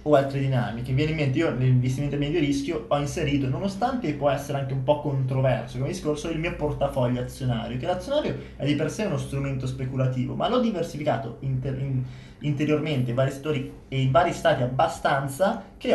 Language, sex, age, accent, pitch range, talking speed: Italian, male, 20-39, native, 125-150 Hz, 190 wpm